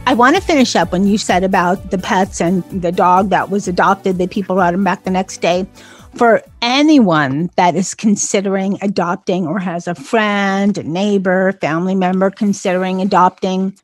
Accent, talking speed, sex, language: American, 180 wpm, female, English